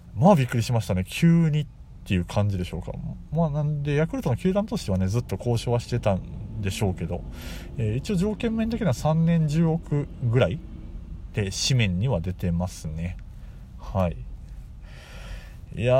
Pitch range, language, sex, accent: 85-120 Hz, Japanese, male, native